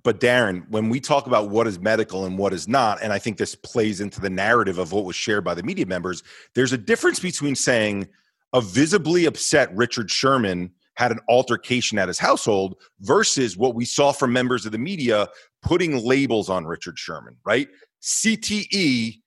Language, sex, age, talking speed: English, male, 40-59, 190 wpm